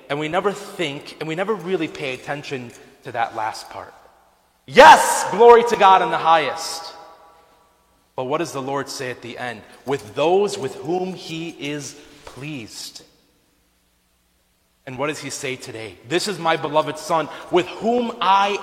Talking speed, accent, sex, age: 165 wpm, American, male, 30-49